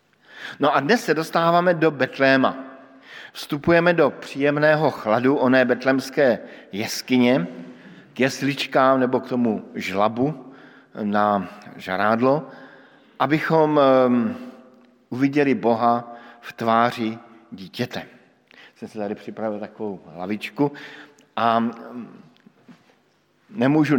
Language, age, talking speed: Slovak, 50-69, 90 wpm